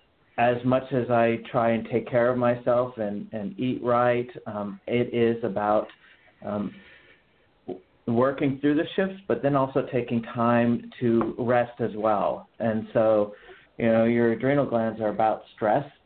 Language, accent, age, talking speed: English, American, 40-59, 155 wpm